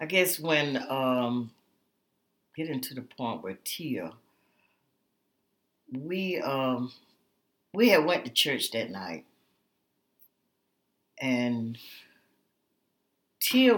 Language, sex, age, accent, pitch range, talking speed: English, female, 60-79, American, 120-150 Hz, 90 wpm